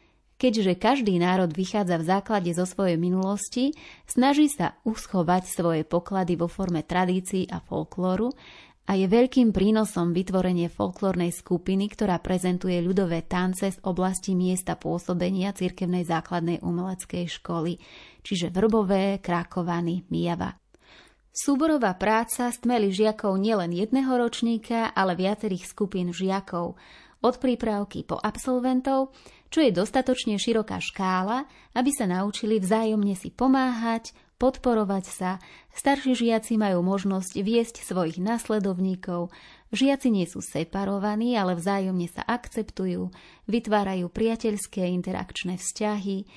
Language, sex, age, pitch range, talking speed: Slovak, female, 30-49, 180-225 Hz, 115 wpm